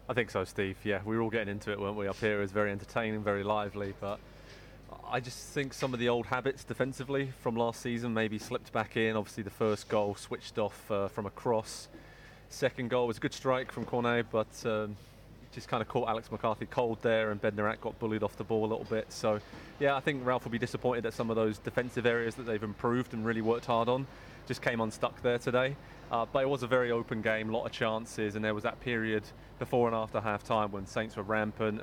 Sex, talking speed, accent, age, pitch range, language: male, 245 wpm, British, 30-49, 110-125 Hz, English